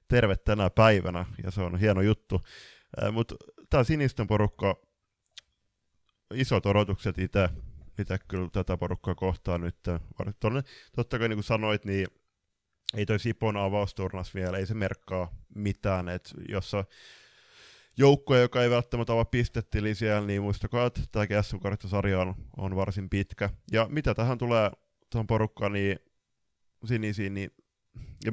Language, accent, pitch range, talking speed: Finnish, native, 90-110 Hz, 130 wpm